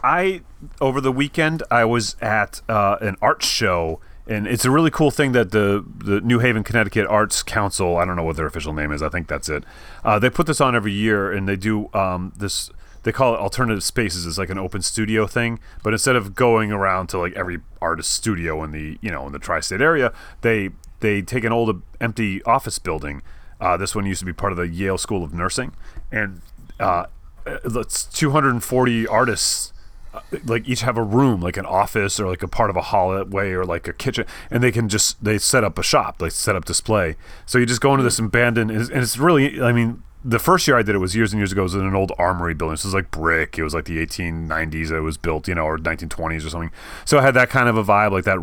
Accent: American